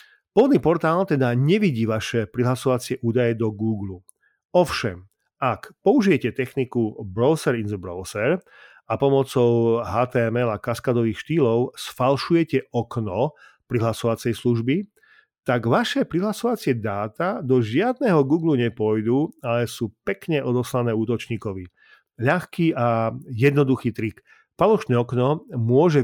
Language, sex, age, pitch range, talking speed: Slovak, male, 40-59, 115-140 Hz, 110 wpm